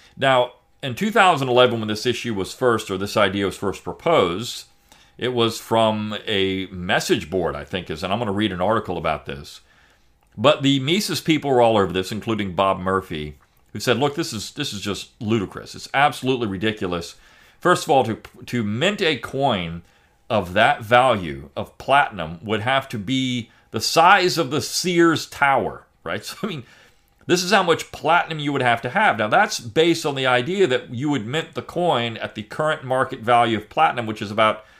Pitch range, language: 105-135 Hz, English